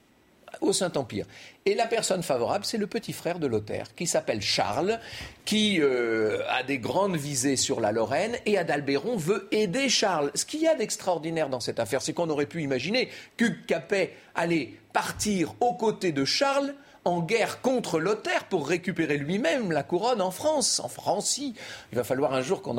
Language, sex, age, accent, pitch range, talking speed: French, male, 40-59, French, 155-240 Hz, 180 wpm